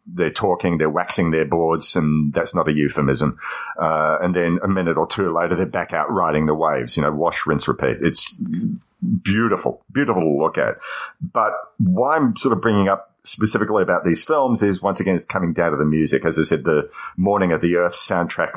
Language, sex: English, male